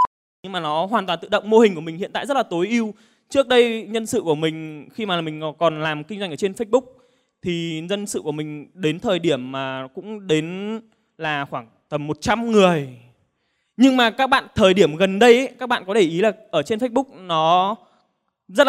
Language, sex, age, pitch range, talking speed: Vietnamese, male, 20-39, 165-225 Hz, 220 wpm